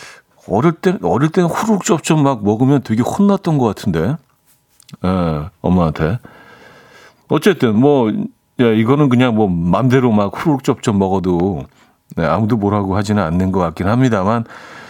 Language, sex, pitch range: Korean, male, 105-145 Hz